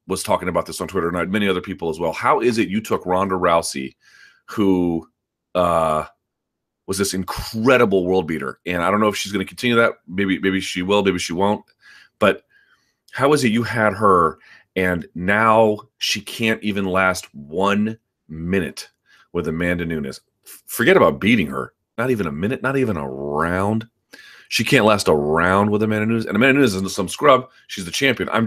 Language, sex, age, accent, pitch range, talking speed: English, male, 30-49, American, 95-115 Hz, 195 wpm